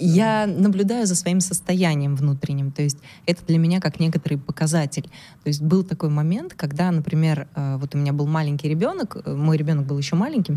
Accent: native